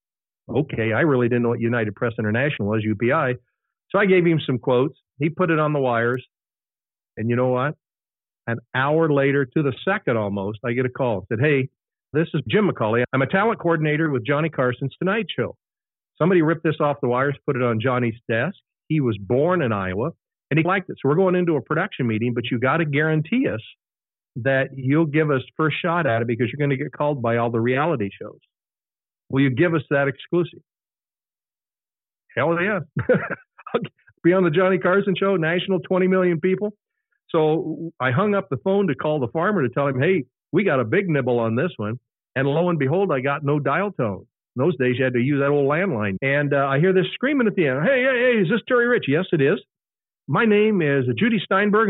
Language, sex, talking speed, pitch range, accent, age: English, male, 220 wpm, 125-180 Hz, American, 50-69